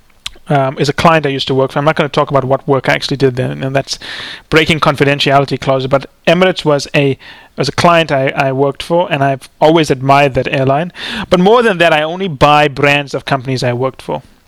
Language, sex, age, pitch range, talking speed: English, male, 30-49, 140-185 Hz, 230 wpm